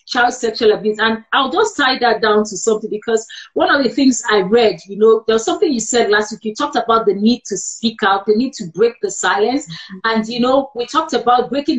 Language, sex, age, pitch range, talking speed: English, female, 40-59, 215-260 Hz, 240 wpm